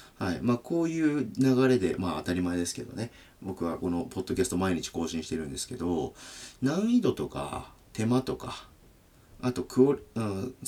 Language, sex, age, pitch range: Japanese, male, 40-59, 90-135 Hz